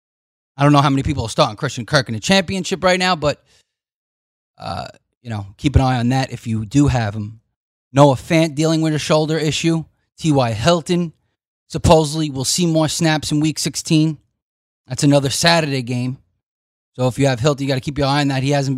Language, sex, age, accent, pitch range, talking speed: English, male, 30-49, American, 120-155 Hz, 210 wpm